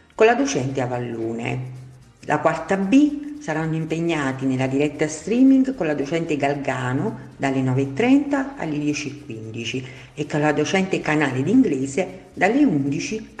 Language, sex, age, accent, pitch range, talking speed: Italian, female, 50-69, native, 135-195 Hz, 125 wpm